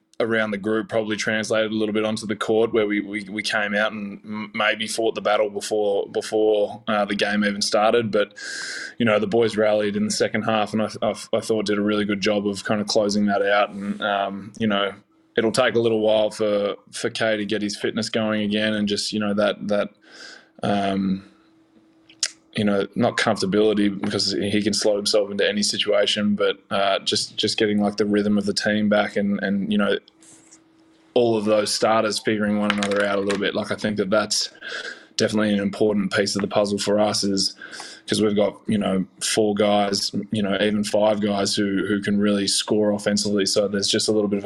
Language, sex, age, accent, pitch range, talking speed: English, male, 20-39, Australian, 100-110 Hz, 215 wpm